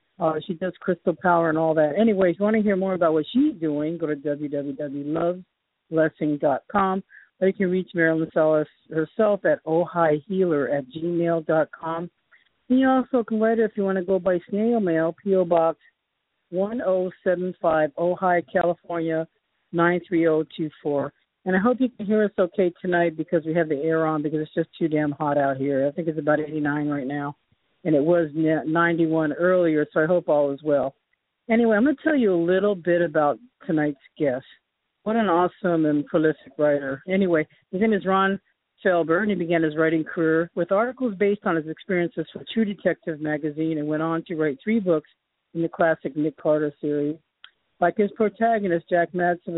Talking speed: 185 wpm